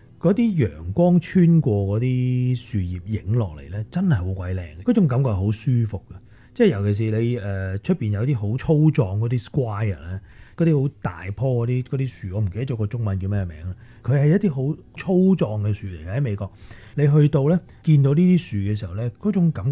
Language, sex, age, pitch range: Chinese, male, 30-49, 100-140 Hz